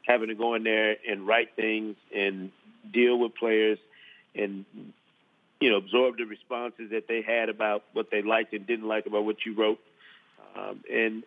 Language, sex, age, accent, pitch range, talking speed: English, male, 40-59, American, 110-125 Hz, 180 wpm